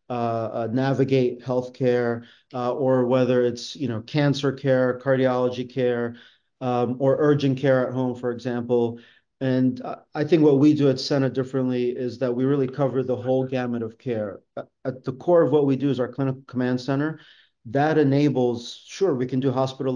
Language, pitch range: English, 125-140 Hz